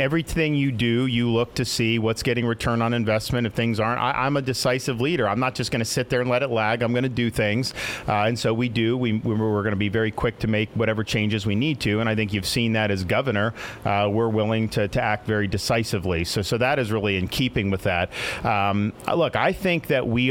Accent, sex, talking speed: American, male, 250 wpm